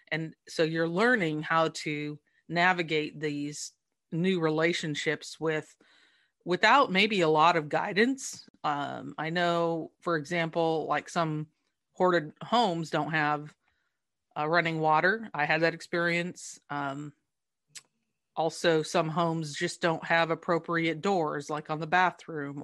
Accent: American